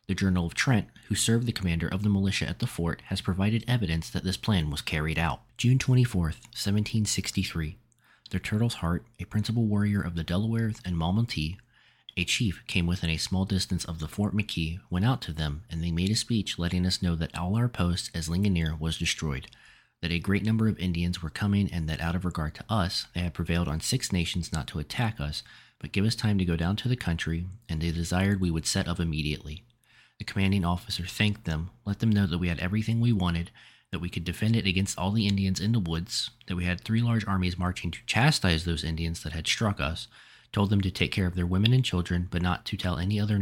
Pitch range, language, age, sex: 85-105 Hz, English, 30-49, male